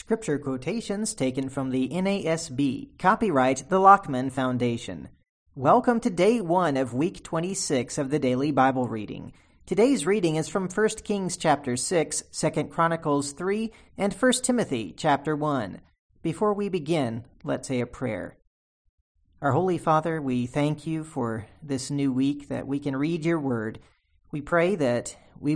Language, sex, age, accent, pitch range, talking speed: English, male, 40-59, American, 125-170 Hz, 155 wpm